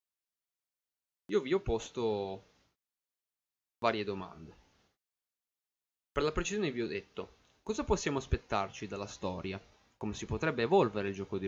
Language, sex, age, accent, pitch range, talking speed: Italian, male, 20-39, native, 95-115 Hz, 125 wpm